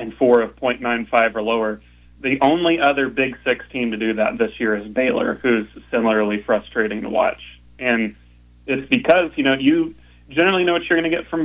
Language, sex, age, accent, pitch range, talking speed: English, male, 30-49, American, 110-135 Hz, 195 wpm